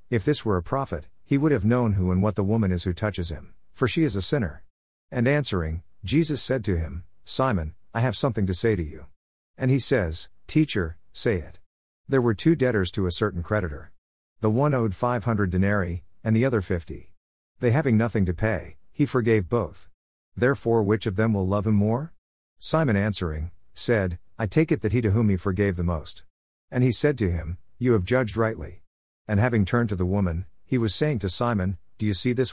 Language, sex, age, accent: English, male, 50-69, American